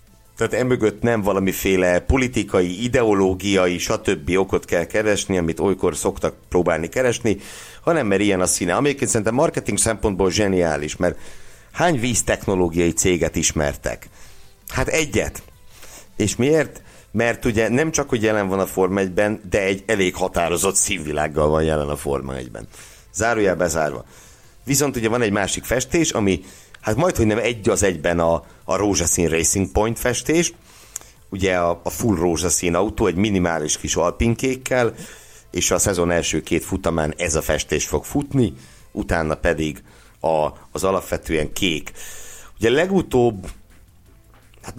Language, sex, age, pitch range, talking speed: Hungarian, male, 60-79, 85-110 Hz, 140 wpm